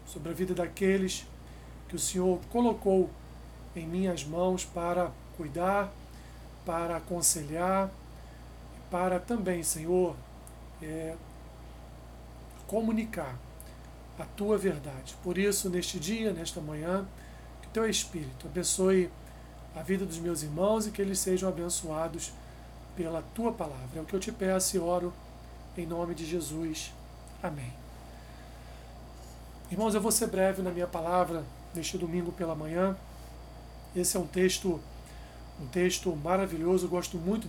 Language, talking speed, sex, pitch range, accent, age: Portuguese, 130 wpm, male, 120-185 Hz, Brazilian, 40-59